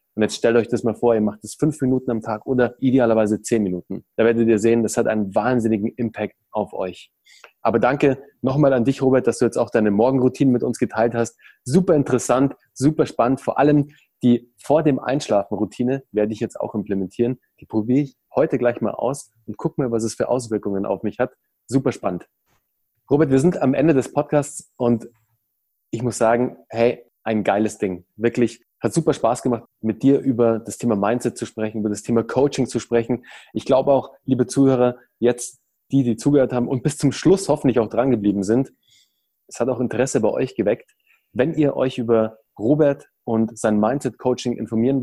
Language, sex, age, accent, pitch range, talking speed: German, male, 20-39, German, 110-130 Hz, 200 wpm